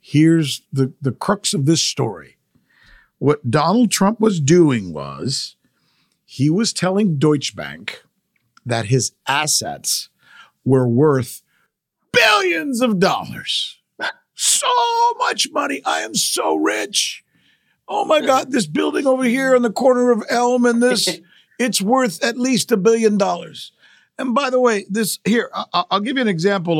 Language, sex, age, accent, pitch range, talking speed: English, male, 50-69, American, 150-225 Hz, 145 wpm